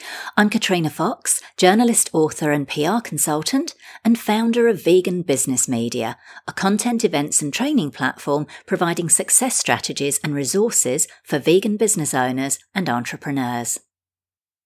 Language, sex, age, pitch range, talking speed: English, female, 40-59, 150-200 Hz, 125 wpm